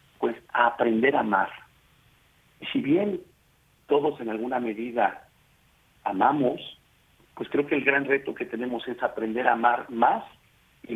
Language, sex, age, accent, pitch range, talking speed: Spanish, male, 50-69, Mexican, 110-135 Hz, 150 wpm